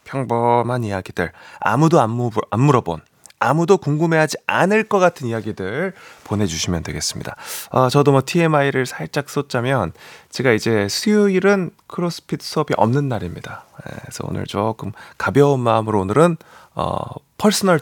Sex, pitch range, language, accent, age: male, 120-190 Hz, Korean, native, 30-49